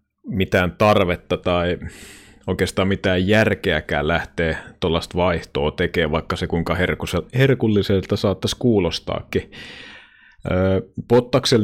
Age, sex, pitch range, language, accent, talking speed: 30-49, male, 90-105 Hz, Finnish, native, 90 wpm